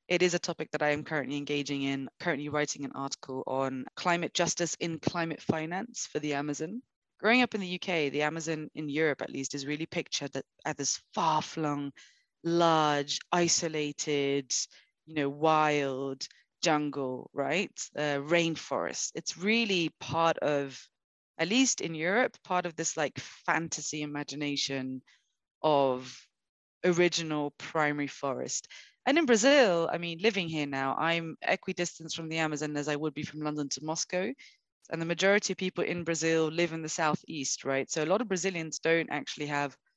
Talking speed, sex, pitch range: 165 wpm, female, 145-180 Hz